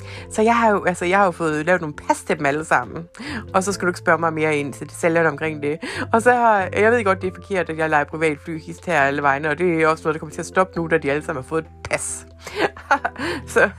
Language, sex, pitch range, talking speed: Danish, female, 155-210 Hz, 290 wpm